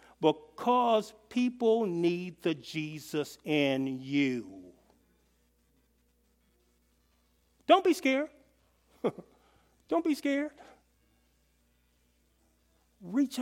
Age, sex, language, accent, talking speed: 50-69, male, English, American, 65 wpm